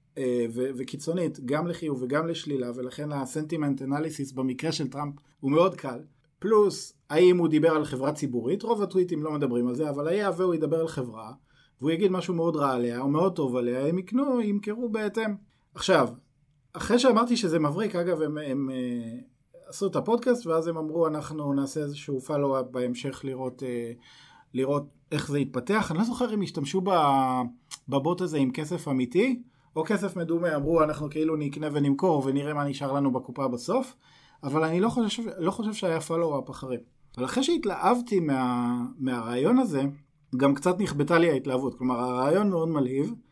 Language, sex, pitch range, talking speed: Hebrew, male, 135-180 Hz, 170 wpm